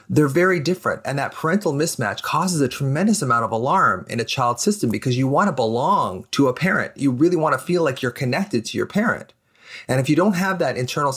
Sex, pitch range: male, 120-165 Hz